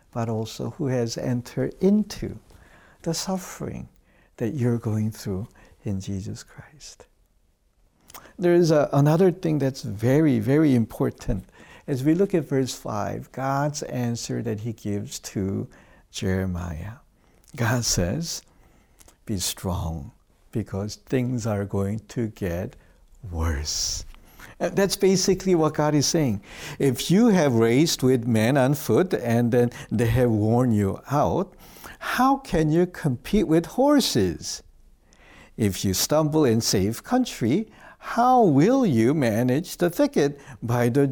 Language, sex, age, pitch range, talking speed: English, male, 60-79, 110-160 Hz, 130 wpm